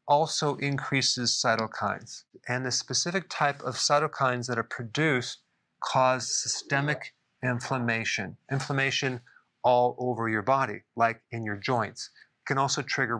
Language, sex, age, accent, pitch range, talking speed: English, male, 40-59, American, 120-135 Hz, 125 wpm